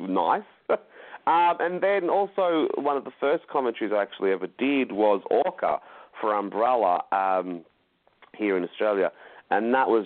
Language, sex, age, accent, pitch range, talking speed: English, male, 30-49, Australian, 95-135 Hz, 150 wpm